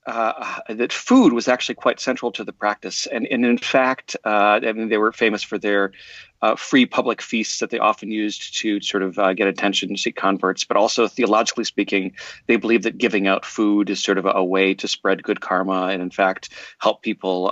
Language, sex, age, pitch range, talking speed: English, male, 40-59, 95-115 Hz, 215 wpm